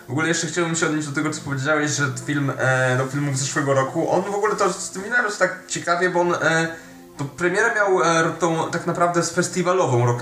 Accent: native